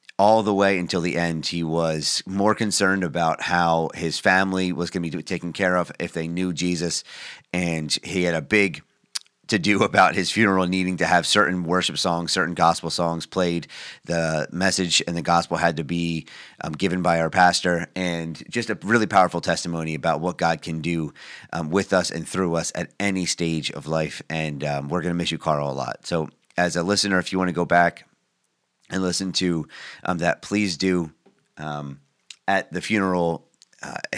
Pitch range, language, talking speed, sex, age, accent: 80-95 Hz, English, 195 wpm, male, 30-49, American